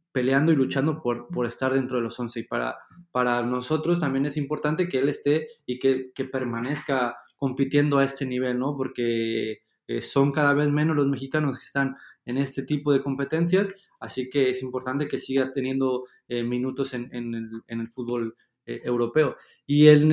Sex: male